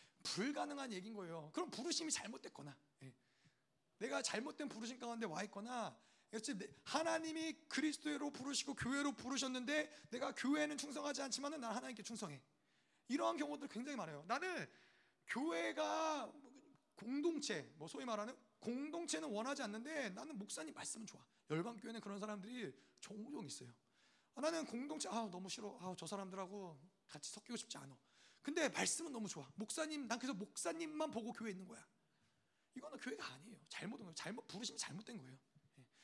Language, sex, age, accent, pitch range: Korean, male, 30-49, native, 205-280 Hz